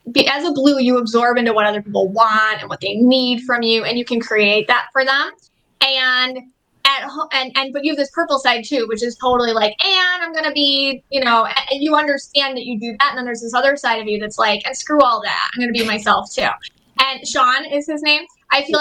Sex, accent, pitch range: female, American, 235-290 Hz